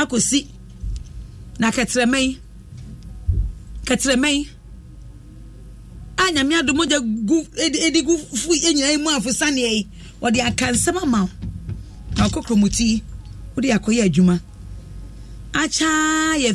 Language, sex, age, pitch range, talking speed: English, female, 40-59, 165-270 Hz, 105 wpm